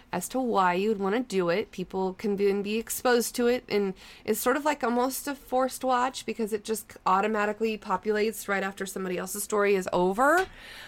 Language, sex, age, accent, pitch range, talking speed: English, female, 30-49, American, 185-230 Hz, 200 wpm